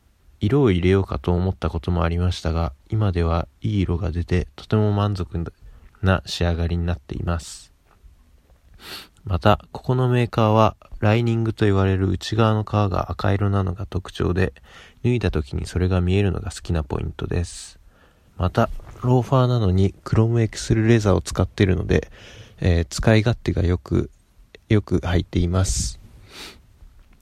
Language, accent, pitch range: Japanese, native, 85-105 Hz